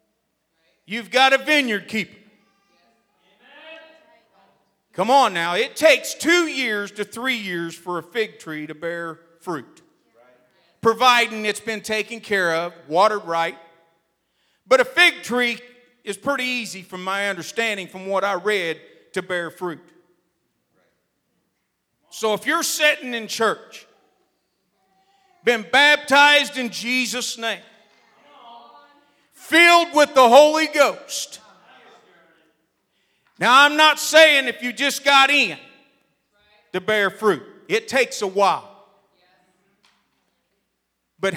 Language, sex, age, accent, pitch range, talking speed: English, male, 40-59, American, 190-275 Hz, 115 wpm